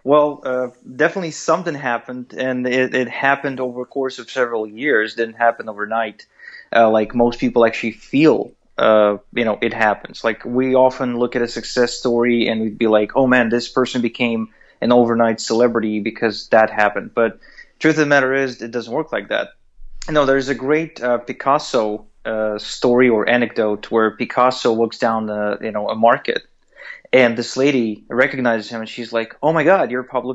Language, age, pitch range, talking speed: English, 30-49, 120-140 Hz, 190 wpm